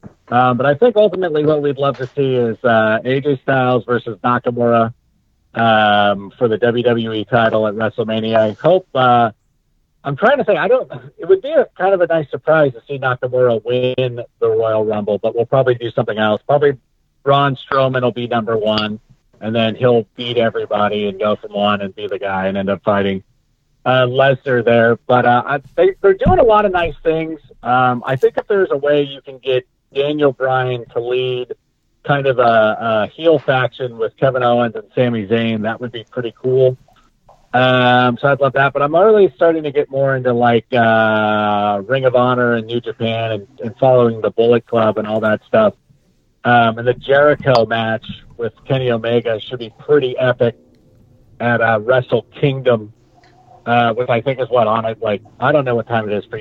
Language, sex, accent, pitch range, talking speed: English, male, American, 115-135 Hz, 195 wpm